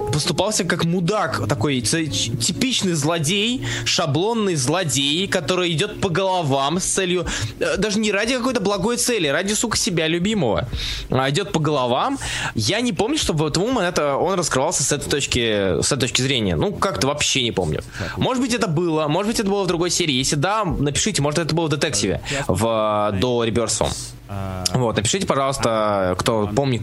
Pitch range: 125-210 Hz